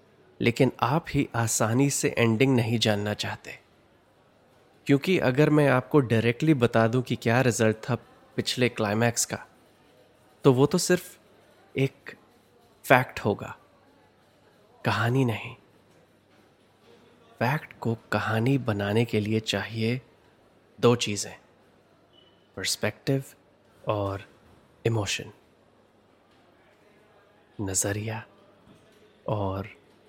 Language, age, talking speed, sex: Hindi, 30-49, 90 wpm, male